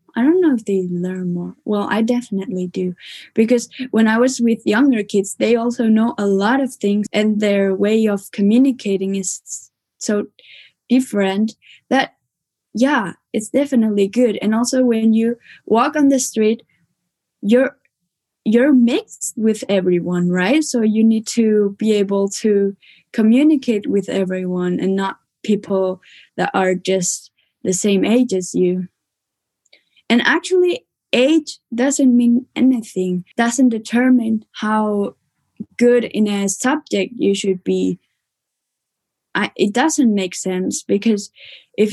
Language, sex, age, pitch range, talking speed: German, female, 10-29, 195-245 Hz, 135 wpm